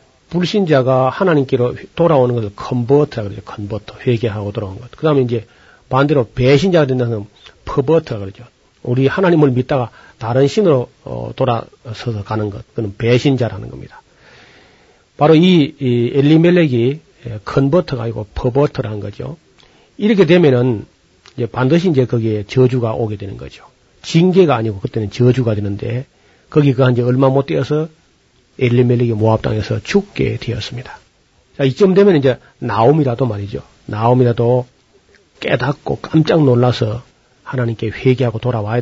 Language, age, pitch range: Korean, 40-59, 115-140 Hz